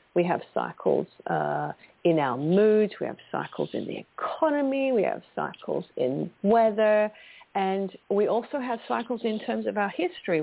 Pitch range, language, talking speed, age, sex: 185-245 Hz, English, 160 wpm, 50-69, female